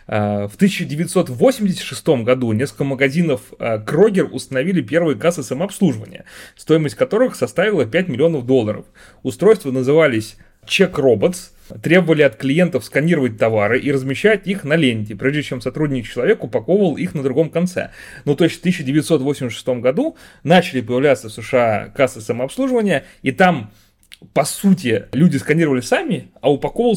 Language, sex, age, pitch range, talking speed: Russian, male, 30-49, 120-170 Hz, 130 wpm